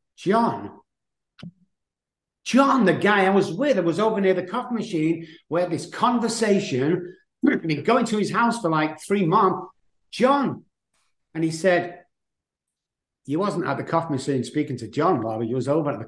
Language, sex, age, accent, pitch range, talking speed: English, male, 50-69, British, 115-140 Hz, 170 wpm